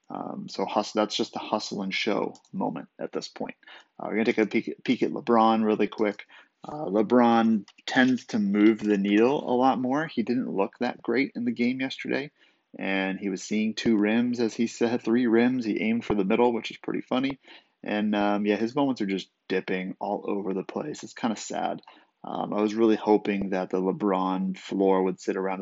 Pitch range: 100-120 Hz